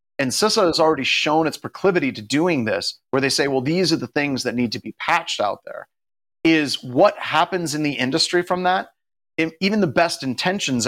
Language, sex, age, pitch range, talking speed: English, male, 30-49, 125-170 Hz, 205 wpm